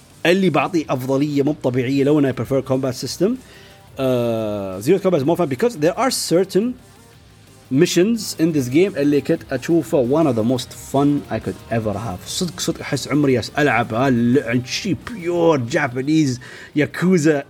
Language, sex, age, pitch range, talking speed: Arabic, male, 30-49, 135-185 Hz, 130 wpm